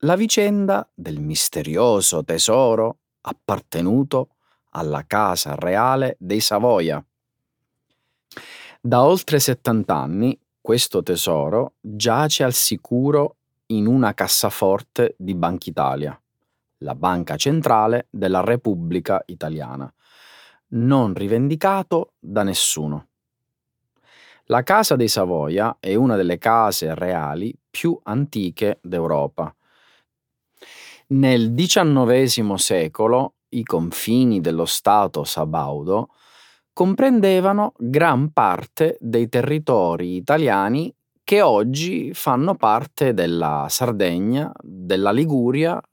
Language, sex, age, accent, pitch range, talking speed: Italian, male, 30-49, native, 95-145 Hz, 90 wpm